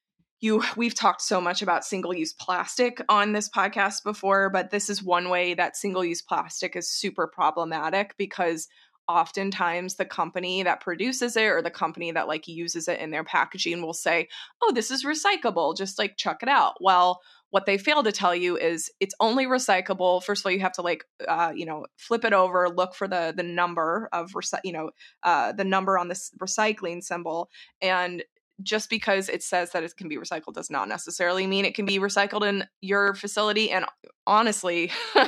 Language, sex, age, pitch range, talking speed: English, female, 20-39, 175-210 Hz, 190 wpm